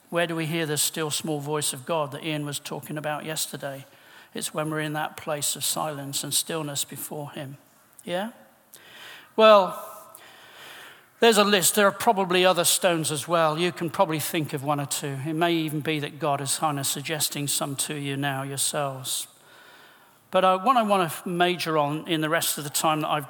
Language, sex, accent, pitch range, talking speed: English, male, British, 145-185 Hz, 200 wpm